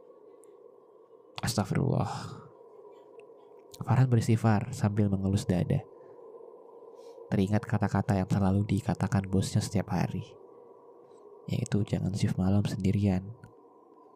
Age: 20-39